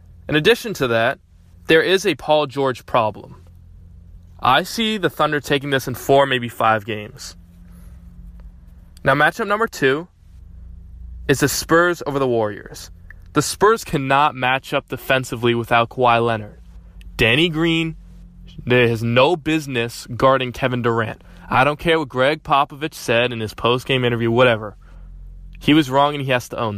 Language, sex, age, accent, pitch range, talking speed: English, male, 20-39, American, 90-150 Hz, 150 wpm